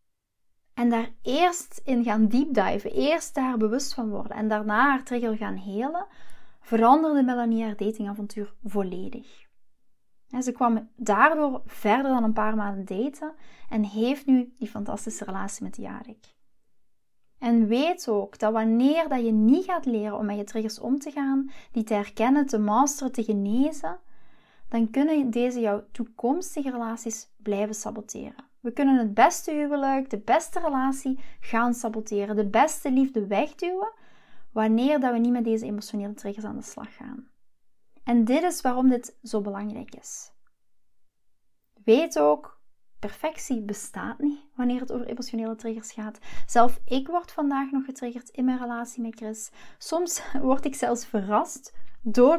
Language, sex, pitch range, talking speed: Dutch, female, 215-270 Hz, 150 wpm